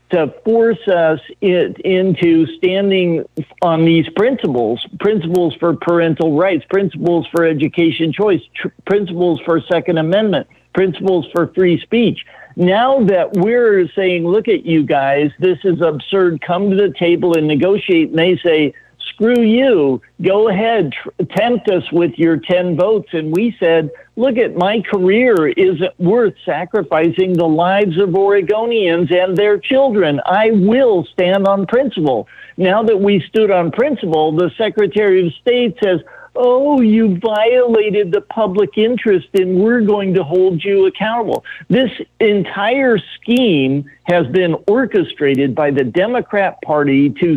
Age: 60-79